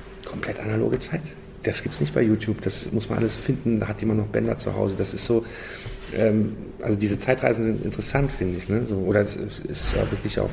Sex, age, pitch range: male, 40-59, 95-110 Hz